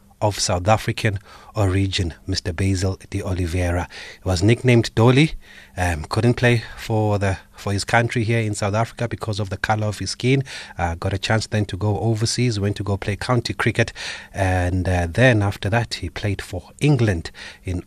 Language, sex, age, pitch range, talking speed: English, male, 30-49, 90-105 Hz, 185 wpm